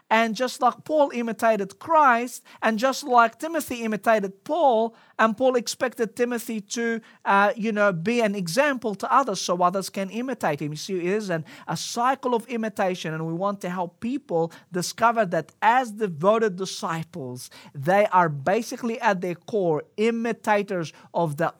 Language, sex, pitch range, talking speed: English, male, 170-235 Hz, 160 wpm